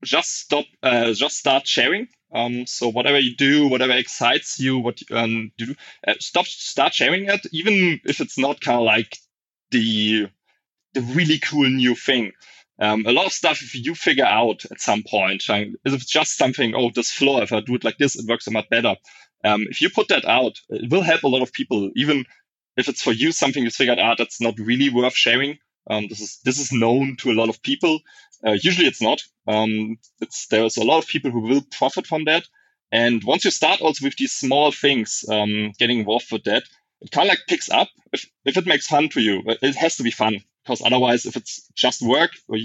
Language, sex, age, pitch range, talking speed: English, male, 20-39, 115-150 Hz, 225 wpm